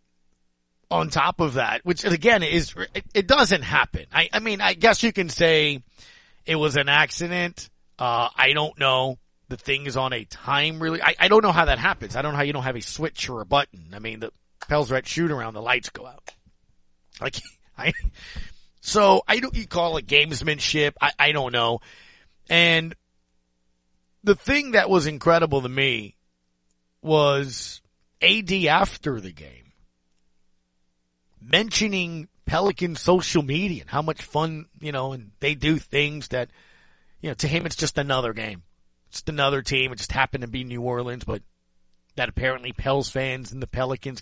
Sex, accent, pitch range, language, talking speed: male, American, 115-160 Hz, English, 180 wpm